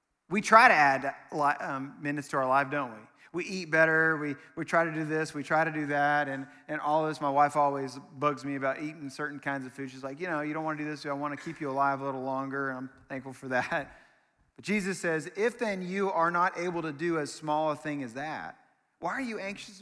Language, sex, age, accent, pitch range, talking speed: English, male, 30-49, American, 140-180 Hz, 255 wpm